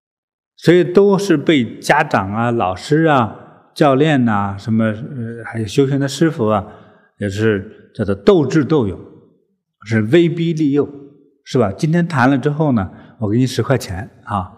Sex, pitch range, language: male, 105-155 Hz, Chinese